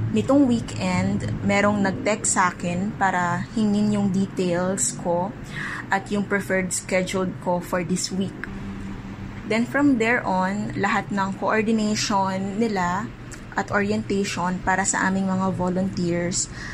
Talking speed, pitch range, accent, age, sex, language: 120 wpm, 165-205 Hz, Filipino, 20-39, female, English